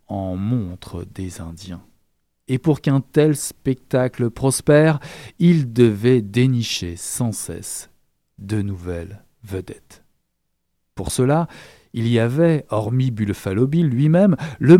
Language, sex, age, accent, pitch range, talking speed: French, male, 50-69, French, 105-150 Hz, 110 wpm